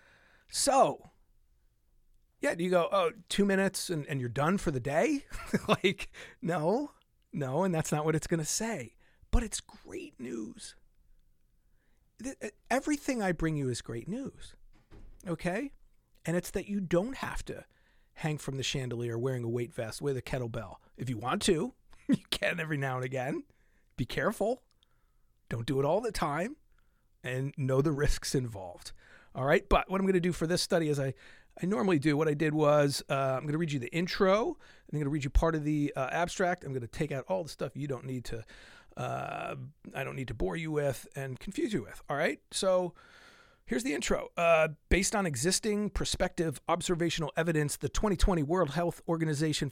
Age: 40-59